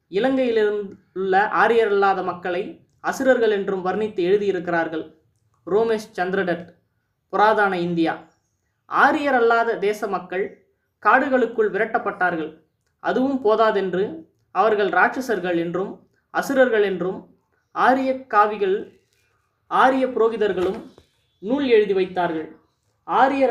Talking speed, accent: 80 wpm, native